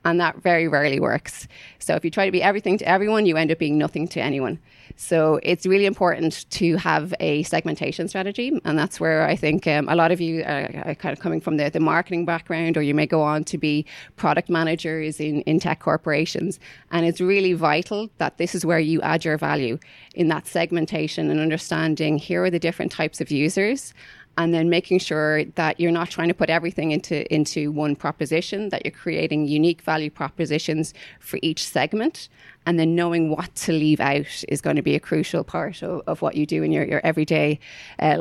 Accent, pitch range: Irish, 155-175 Hz